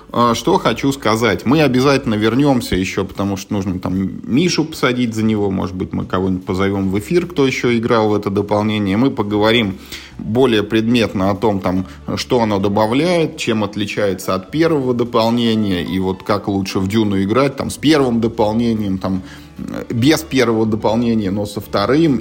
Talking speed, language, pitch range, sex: 165 wpm, Russian, 105-125 Hz, male